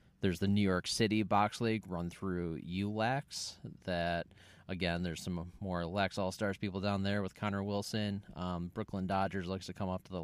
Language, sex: English, male